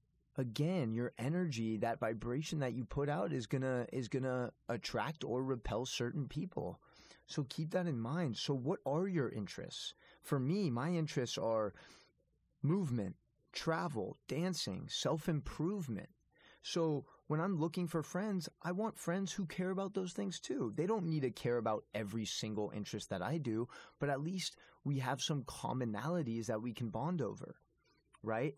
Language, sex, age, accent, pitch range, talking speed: English, male, 20-39, American, 115-155 Hz, 165 wpm